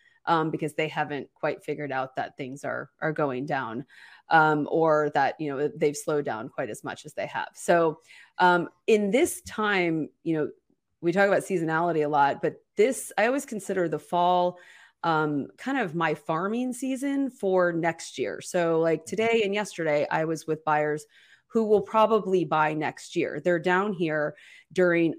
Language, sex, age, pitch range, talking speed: English, female, 30-49, 155-205 Hz, 180 wpm